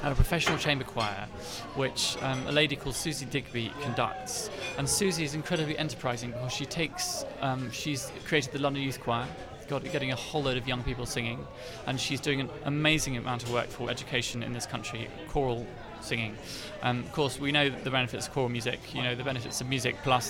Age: 20-39